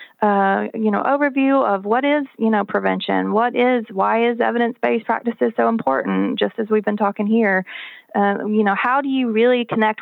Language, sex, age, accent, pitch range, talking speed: English, female, 30-49, American, 195-235 Hz, 190 wpm